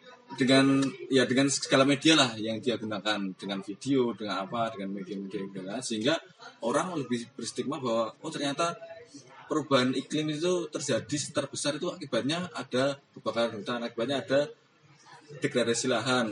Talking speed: 135 wpm